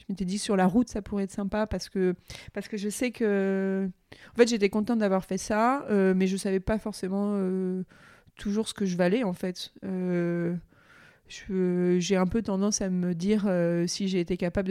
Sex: female